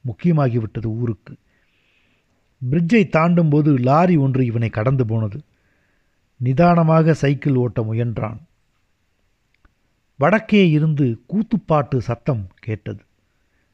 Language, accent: Tamil, native